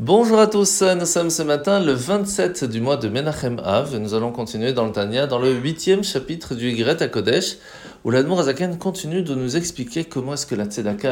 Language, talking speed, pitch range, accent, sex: French, 215 wpm, 120-170 Hz, French, male